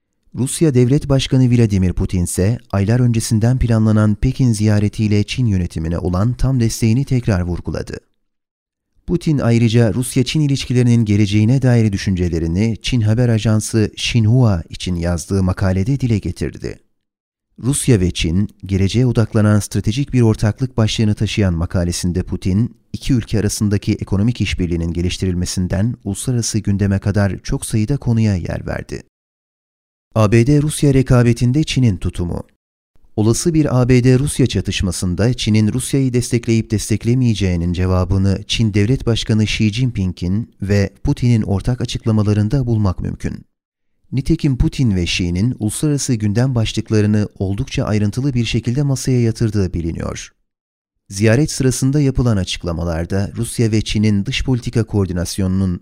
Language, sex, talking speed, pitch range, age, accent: Turkish, male, 115 wpm, 100-125 Hz, 40-59, native